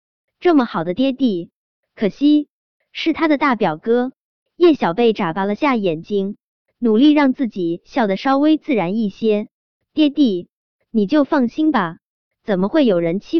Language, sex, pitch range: Chinese, male, 190-270 Hz